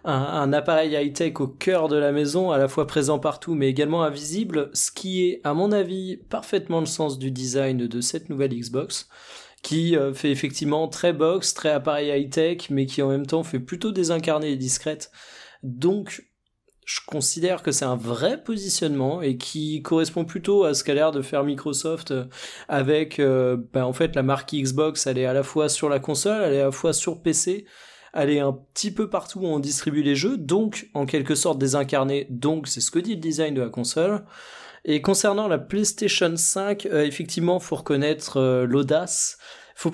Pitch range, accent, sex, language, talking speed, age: 140-175 Hz, French, male, French, 195 wpm, 20-39